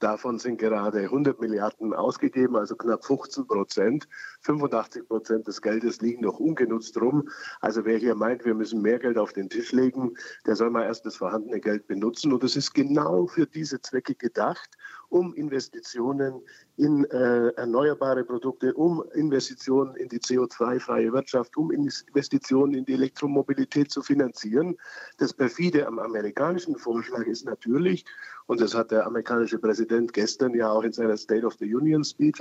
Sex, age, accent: male, 50-69, German